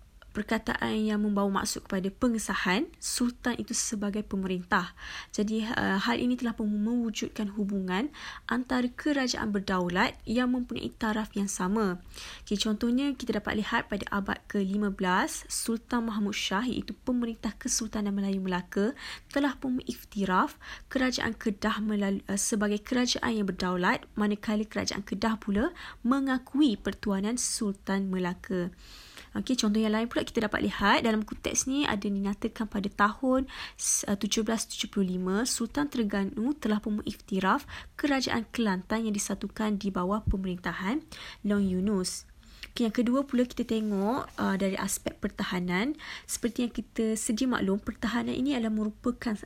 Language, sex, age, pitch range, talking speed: Malay, female, 20-39, 200-240 Hz, 130 wpm